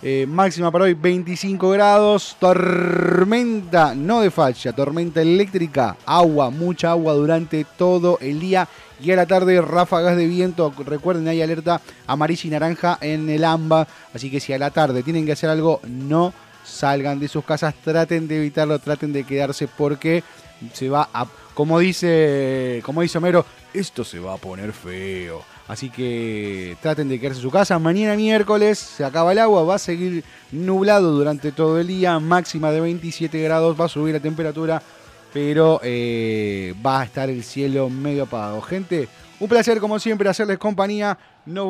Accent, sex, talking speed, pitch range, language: Argentinian, male, 170 wpm, 140-180 Hz, Spanish